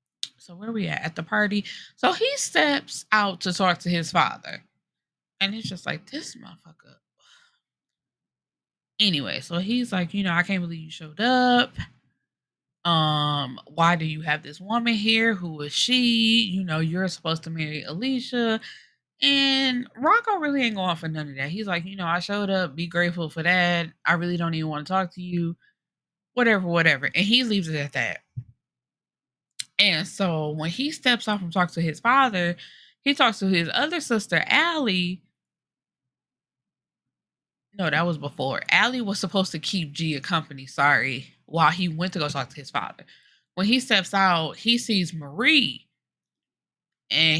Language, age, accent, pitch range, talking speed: English, 20-39, American, 160-220 Hz, 170 wpm